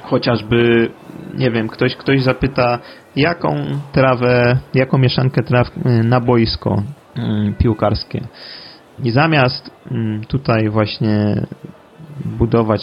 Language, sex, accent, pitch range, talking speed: Polish, male, native, 115-140 Hz, 90 wpm